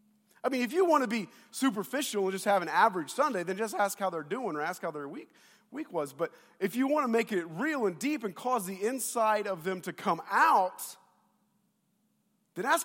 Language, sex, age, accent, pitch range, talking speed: English, male, 40-59, American, 170-220 Hz, 225 wpm